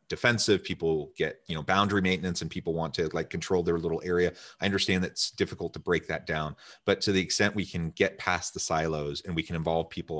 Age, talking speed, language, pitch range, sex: 30-49, 230 wpm, English, 85-105 Hz, male